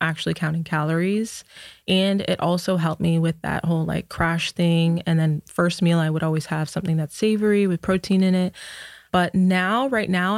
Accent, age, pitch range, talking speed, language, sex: American, 20-39, 170-195 Hz, 190 wpm, English, female